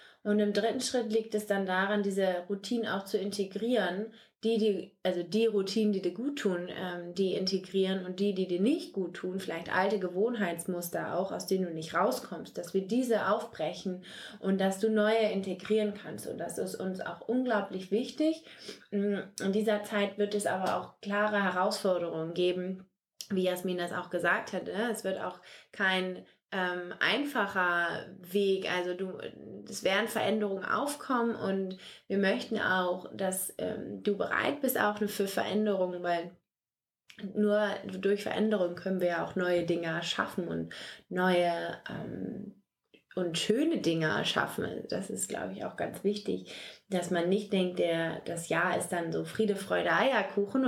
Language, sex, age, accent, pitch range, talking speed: English, female, 20-39, German, 180-210 Hz, 160 wpm